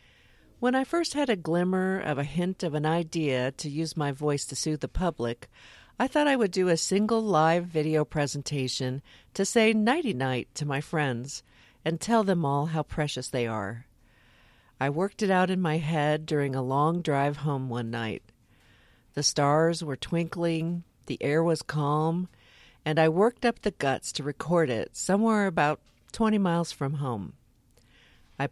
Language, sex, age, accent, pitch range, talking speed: English, female, 50-69, American, 130-180 Hz, 175 wpm